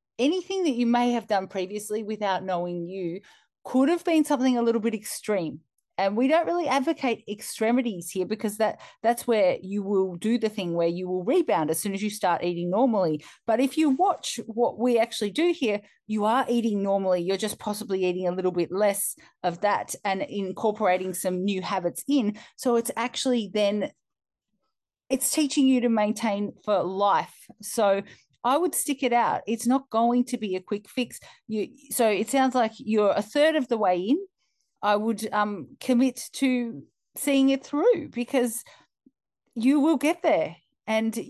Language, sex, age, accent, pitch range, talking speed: English, female, 40-59, Australian, 195-250 Hz, 180 wpm